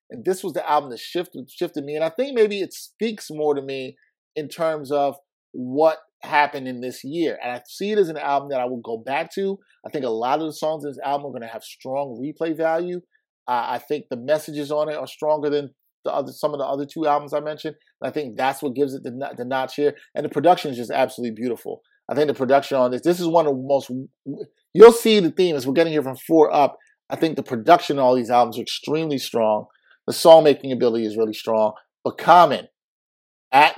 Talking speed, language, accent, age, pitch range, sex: 245 wpm, English, American, 30-49, 130-160 Hz, male